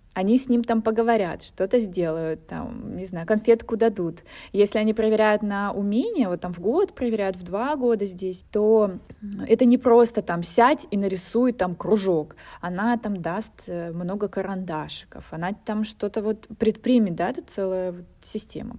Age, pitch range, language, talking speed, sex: 20-39, 180-230 Hz, Russian, 165 wpm, female